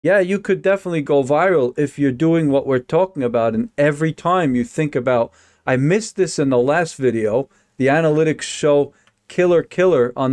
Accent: American